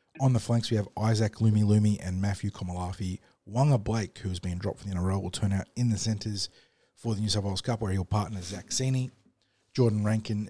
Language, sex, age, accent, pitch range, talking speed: English, male, 30-49, Australian, 95-115 Hz, 225 wpm